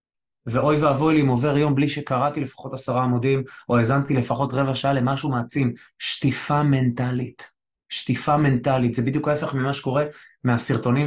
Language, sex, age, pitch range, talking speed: Hebrew, male, 20-39, 120-135 Hz, 150 wpm